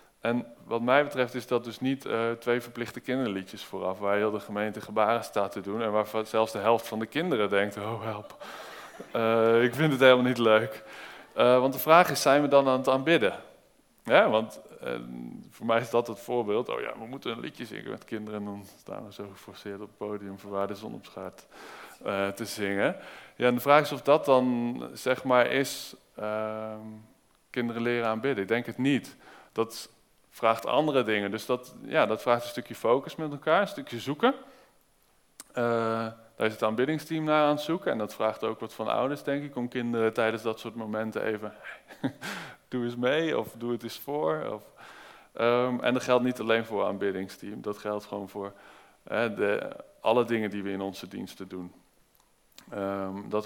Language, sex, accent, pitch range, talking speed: Dutch, male, Dutch, 105-125 Hz, 200 wpm